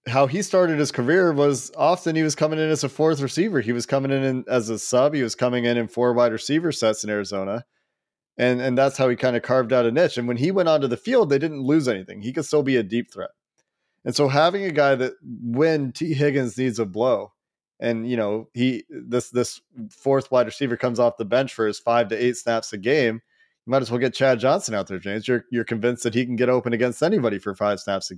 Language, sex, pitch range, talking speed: English, male, 115-135 Hz, 255 wpm